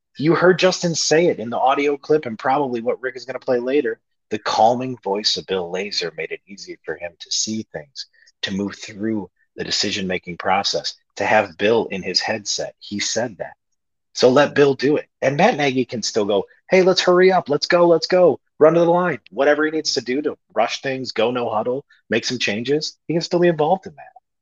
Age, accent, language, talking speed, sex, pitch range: 30-49, American, English, 225 wpm, male, 100-150 Hz